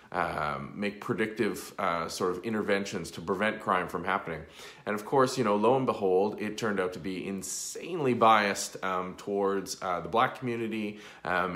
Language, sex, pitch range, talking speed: English, male, 90-115 Hz, 175 wpm